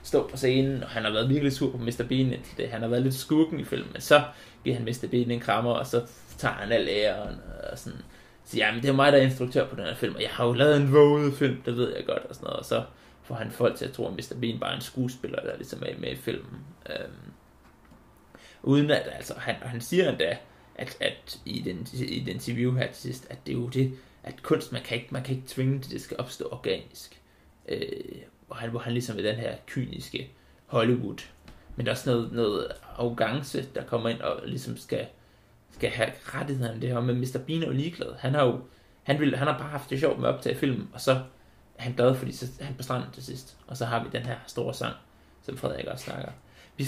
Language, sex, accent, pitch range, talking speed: Danish, male, native, 120-140 Hz, 240 wpm